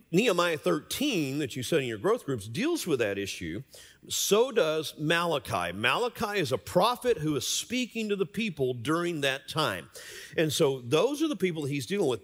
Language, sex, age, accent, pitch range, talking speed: English, male, 50-69, American, 120-185 Hz, 185 wpm